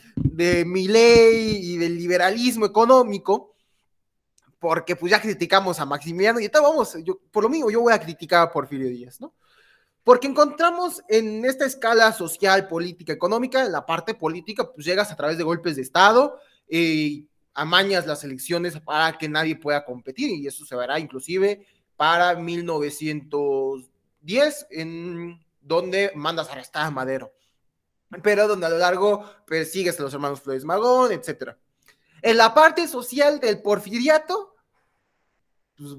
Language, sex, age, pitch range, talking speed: Spanish, male, 20-39, 160-230 Hz, 150 wpm